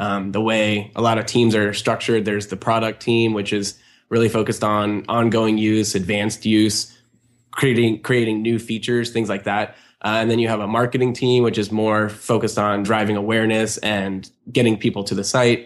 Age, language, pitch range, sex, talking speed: 20-39, English, 105-115 Hz, male, 190 wpm